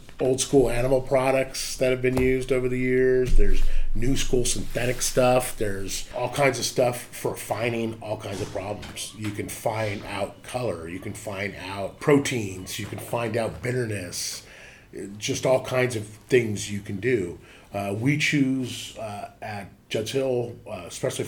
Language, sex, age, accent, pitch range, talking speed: English, male, 30-49, American, 100-125 Hz, 165 wpm